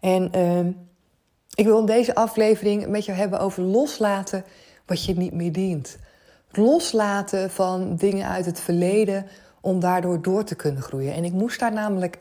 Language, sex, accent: Dutch, female, Dutch